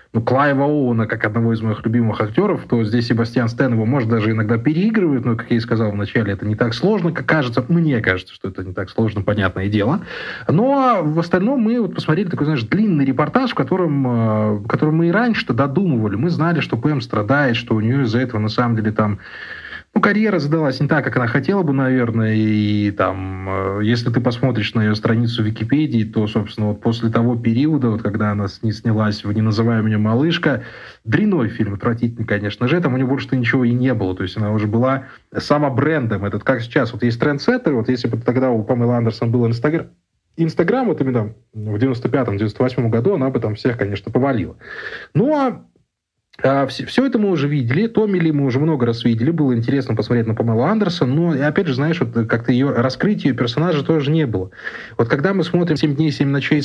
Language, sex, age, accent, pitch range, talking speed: Russian, male, 30-49, native, 110-155 Hz, 205 wpm